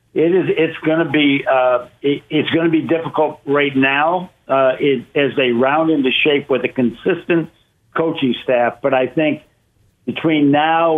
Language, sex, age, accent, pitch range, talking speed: English, male, 60-79, American, 130-155 Hz, 175 wpm